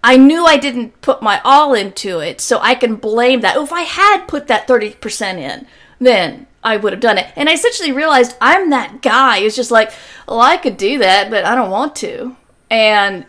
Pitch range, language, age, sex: 210-265 Hz, English, 40-59, female